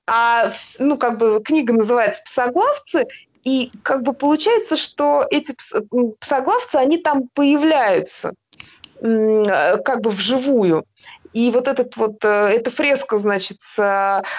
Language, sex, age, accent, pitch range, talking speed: Russian, female, 20-39, native, 220-300 Hz, 130 wpm